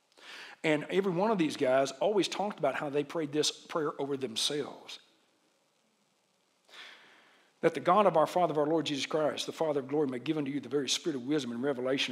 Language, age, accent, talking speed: English, 60-79, American, 210 wpm